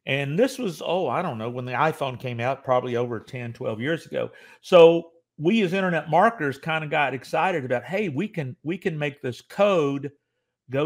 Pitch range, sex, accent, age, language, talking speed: 125-170 Hz, male, American, 50-69, English, 205 wpm